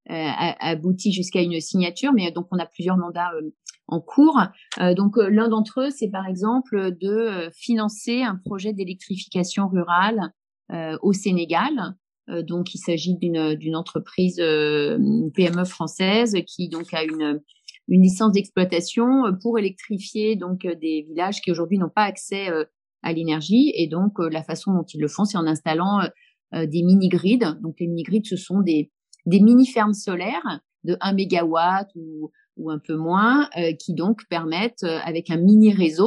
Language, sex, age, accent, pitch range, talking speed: French, female, 40-59, French, 165-215 Hz, 155 wpm